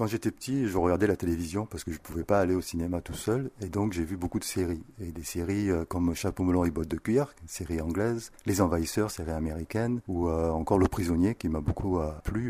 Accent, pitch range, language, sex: French, 85-105 Hz, French, male